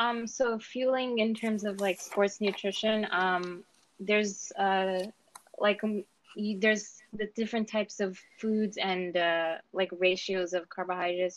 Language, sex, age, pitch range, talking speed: English, female, 20-39, 180-205 Hz, 130 wpm